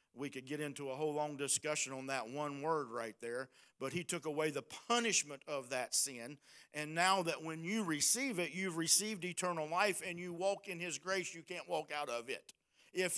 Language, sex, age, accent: English, male, 50-69, American